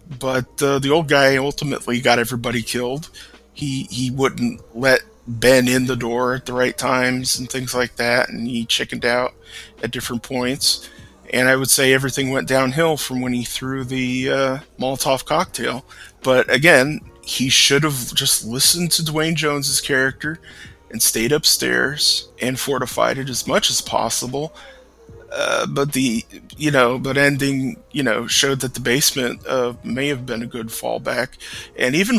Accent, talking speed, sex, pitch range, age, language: American, 170 wpm, male, 125-140 Hz, 20-39, English